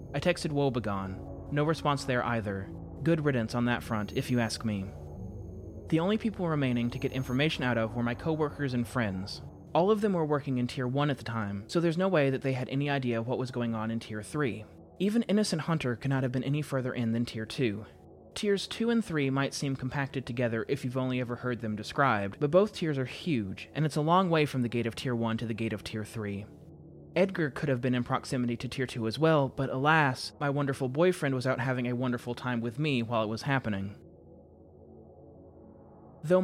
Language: English